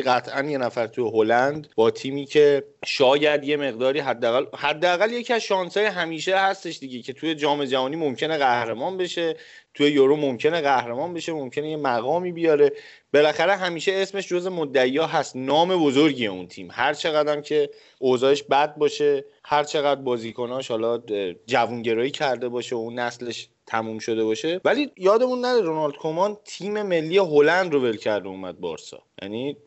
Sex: male